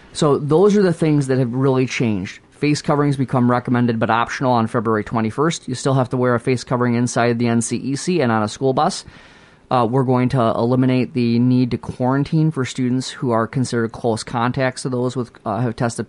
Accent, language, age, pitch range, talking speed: American, English, 30-49, 120-155 Hz, 210 wpm